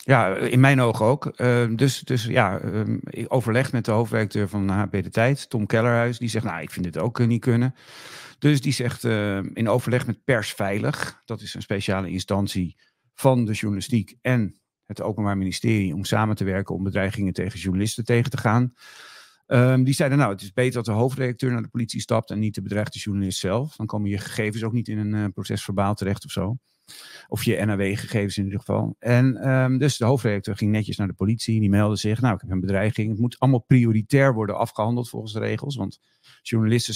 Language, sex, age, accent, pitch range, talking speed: Dutch, male, 50-69, Dutch, 100-125 Hz, 210 wpm